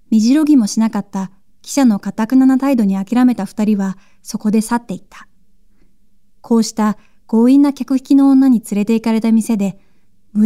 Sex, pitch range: female, 200-250 Hz